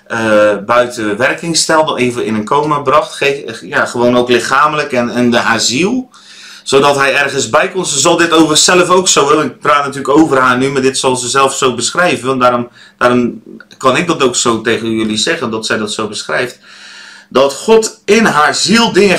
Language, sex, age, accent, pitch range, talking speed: Dutch, male, 30-49, Dutch, 110-150 Hz, 210 wpm